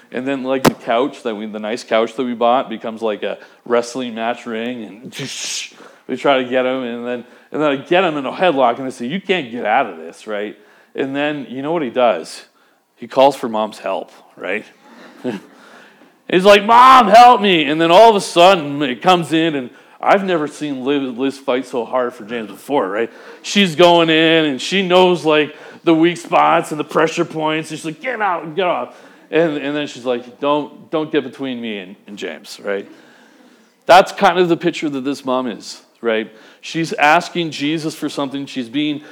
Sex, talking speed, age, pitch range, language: male, 205 wpm, 40-59, 130-170 Hz, English